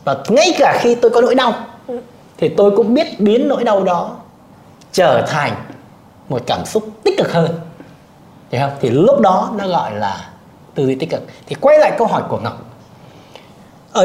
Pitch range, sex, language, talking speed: 205-275 Hz, male, Vietnamese, 190 wpm